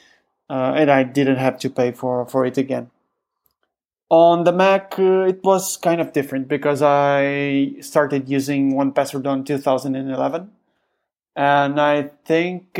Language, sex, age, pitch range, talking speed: English, male, 20-39, 135-155 Hz, 145 wpm